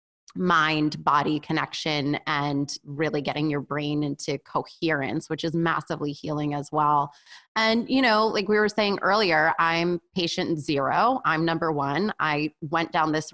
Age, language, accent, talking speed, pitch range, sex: 20-39, English, American, 155 wpm, 150-175 Hz, female